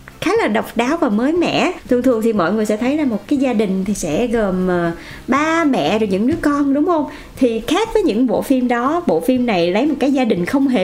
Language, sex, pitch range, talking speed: Vietnamese, female, 210-295 Hz, 260 wpm